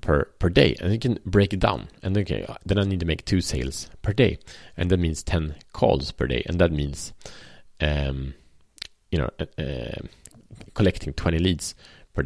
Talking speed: 195 wpm